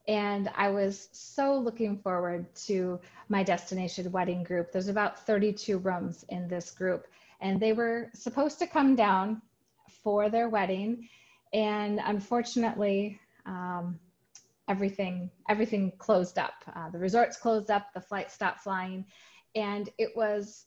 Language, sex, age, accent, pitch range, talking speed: English, female, 20-39, American, 185-225 Hz, 135 wpm